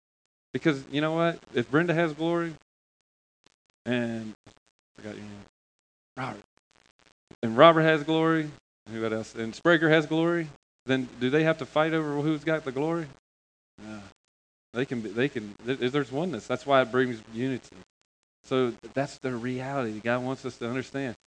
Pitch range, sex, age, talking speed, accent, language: 110-140 Hz, male, 30-49, 165 wpm, American, English